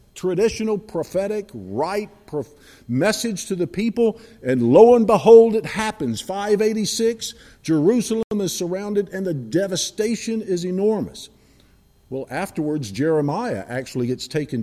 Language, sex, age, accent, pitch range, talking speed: English, male, 50-69, American, 120-195 Hz, 120 wpm